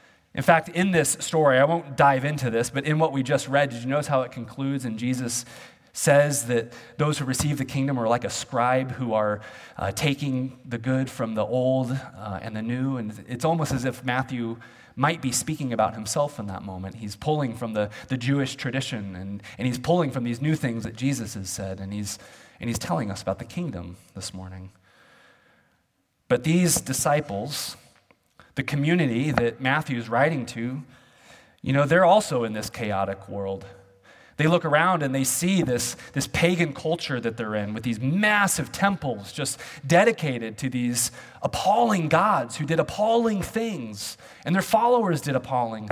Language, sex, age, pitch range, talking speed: English, male, 30-49, 115-155 Hz, 185 wpm